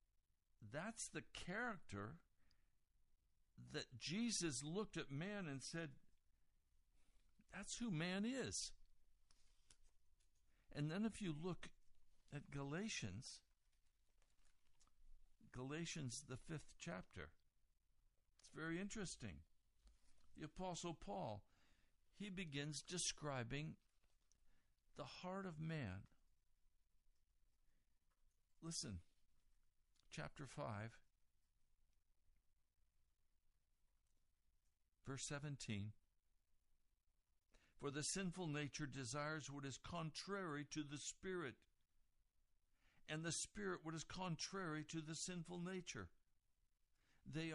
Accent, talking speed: American, 80 wpm